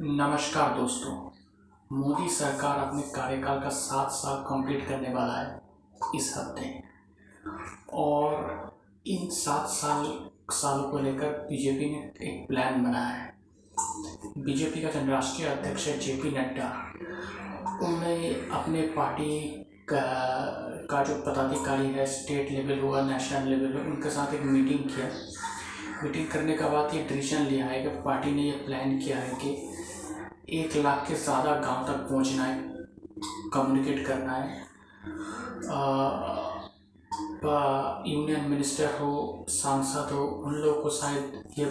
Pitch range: 135-150 Hz